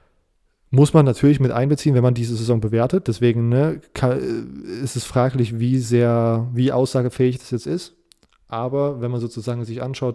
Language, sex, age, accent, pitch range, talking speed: German, male, 20-39, German, 115-125 Hz, 160 wpm